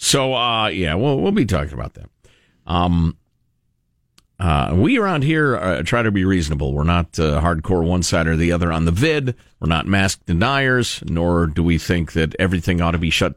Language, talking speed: English, 200 wpm